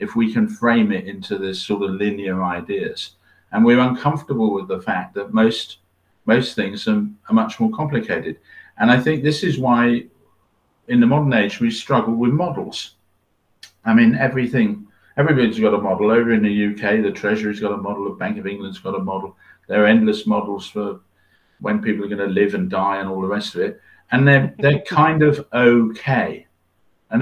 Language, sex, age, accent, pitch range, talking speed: English, male, 50-69, British, 100-145 Hz, 195 wpm